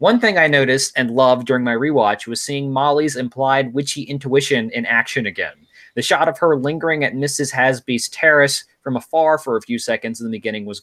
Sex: male